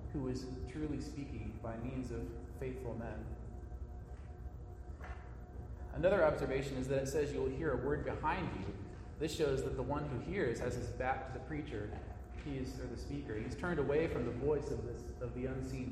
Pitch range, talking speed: 110-140 Hz, 185 wpm